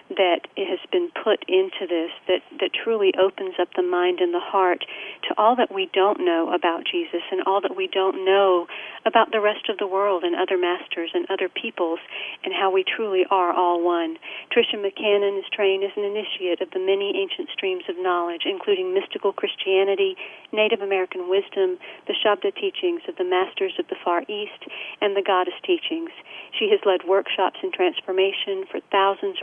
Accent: American